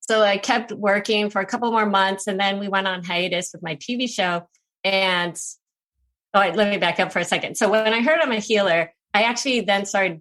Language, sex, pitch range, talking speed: English, female, 180-220 Hz, 230 wpm